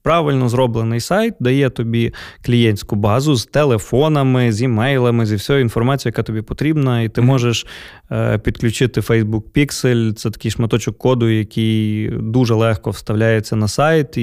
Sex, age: male, 20-39